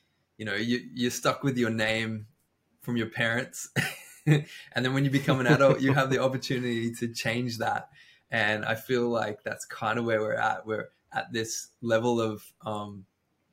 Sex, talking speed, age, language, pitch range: male, 180 wpm, 20-39, English, 105-125 Hz